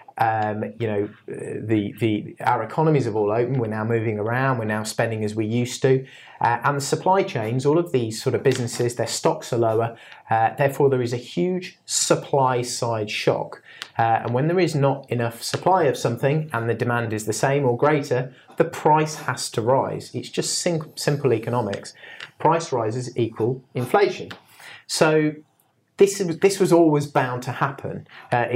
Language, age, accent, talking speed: English, 30-49, British, 180 wpm